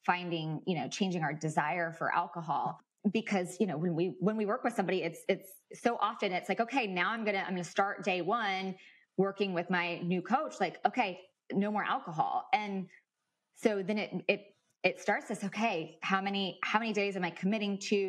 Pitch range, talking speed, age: 175-210 Hz, 210 wpm, 20-39